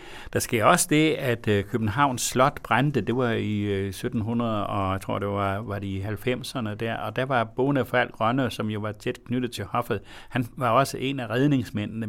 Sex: male